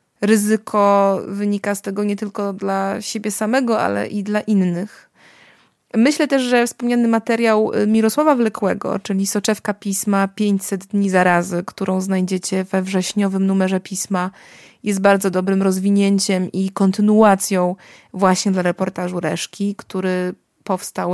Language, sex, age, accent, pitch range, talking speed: Polish, female, 20-39, native, 185-220 Hz, 125 wpm